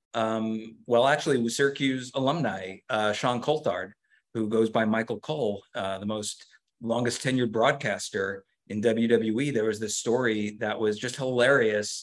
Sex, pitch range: male, 110-140 Hz